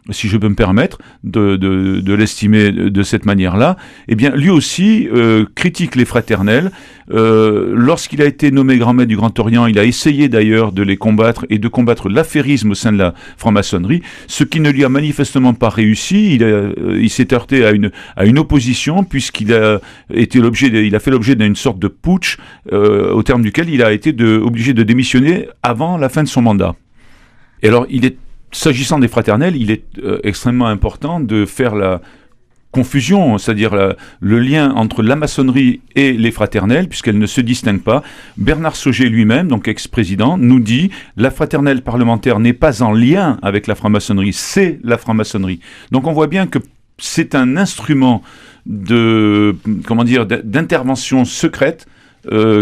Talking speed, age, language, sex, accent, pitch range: 185 wpm, 40-59, French, male, French, 105-135 Hz